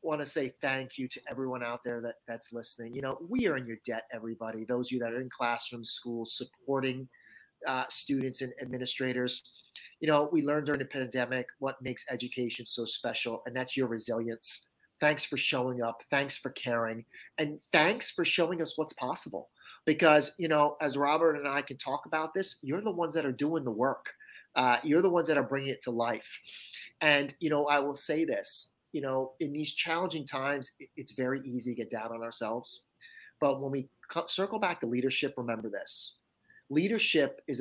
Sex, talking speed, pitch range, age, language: male, 200 wpm, 120-145 Hz, 30-49, English